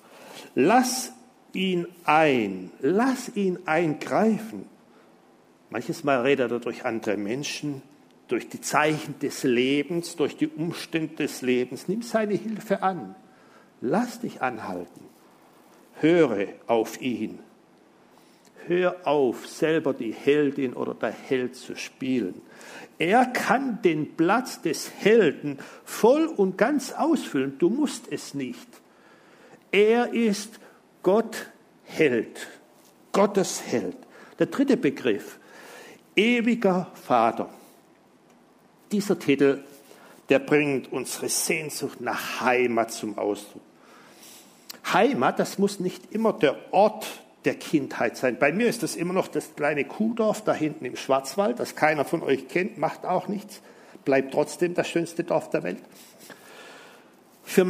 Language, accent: German, German